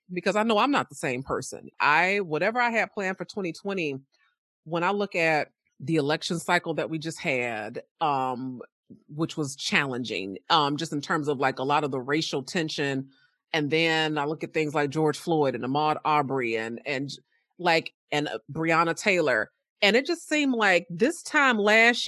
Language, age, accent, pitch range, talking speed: English, 30-49, American, 140-190 Hz, 190 wpm